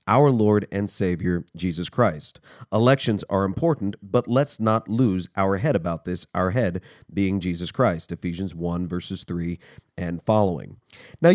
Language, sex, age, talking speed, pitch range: English, male, 30-49, 155 wpm, 100-145 Hz